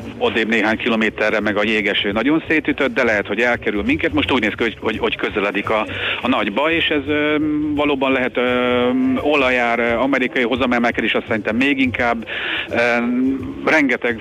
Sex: male